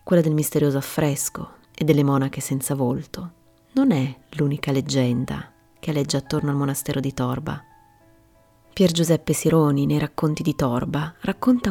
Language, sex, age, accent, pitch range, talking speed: Italian, female, 30-49, native, 130-170 Hz, 145 wpm